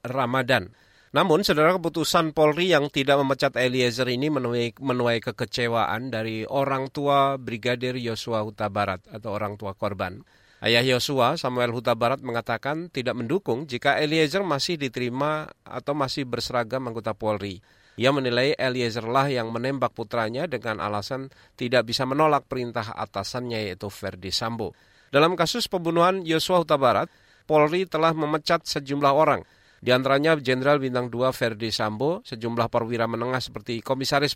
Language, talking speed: Indonesian, 135 wpm